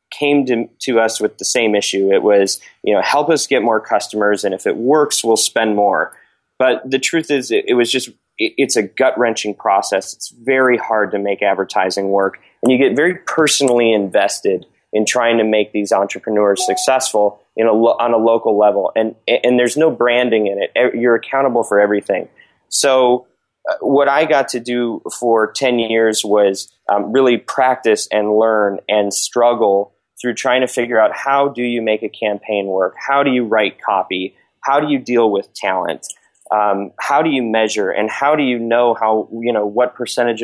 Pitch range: 105-125 Hz